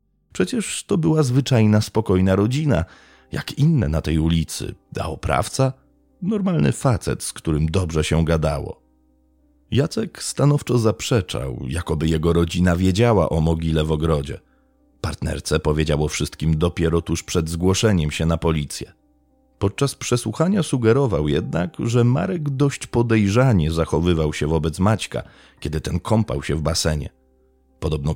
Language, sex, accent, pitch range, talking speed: Polish, male, native, 80-110 Hz, 130 wpm